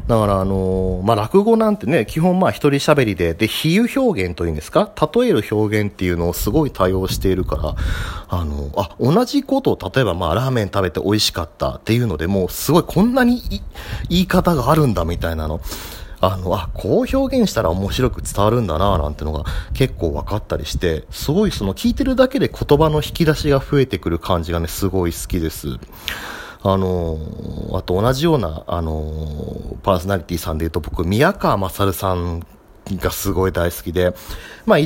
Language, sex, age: Japanese, male, 40-59